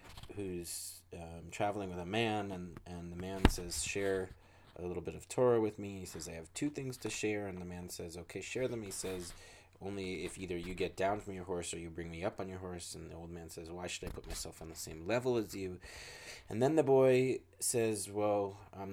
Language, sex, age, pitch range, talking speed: English, male, 30-49, 90-100 Hz, 240 wpm